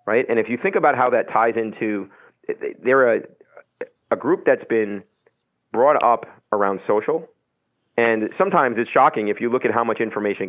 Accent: American